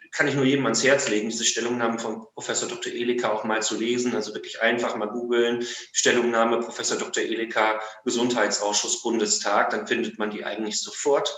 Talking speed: 180 wpm